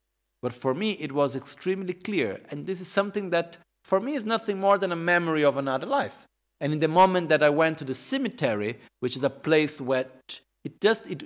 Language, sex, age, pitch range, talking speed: Italian, male, 50-69, 130-190 Hz, 220 wpm